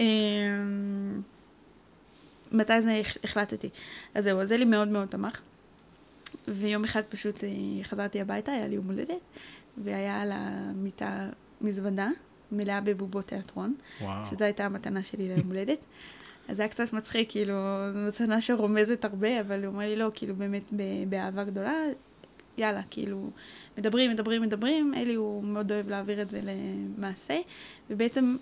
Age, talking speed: 20-39, 135 wpm